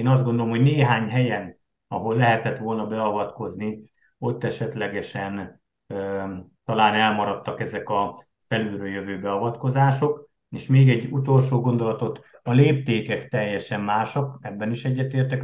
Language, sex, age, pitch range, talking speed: Hungarian, male, 50-69, 105-130 Hz, 125 wpm